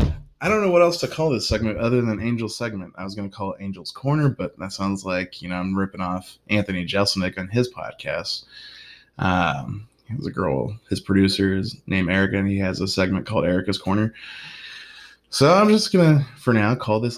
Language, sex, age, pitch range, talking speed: English, male, 20-39, 95-120 Hz, 215 wpm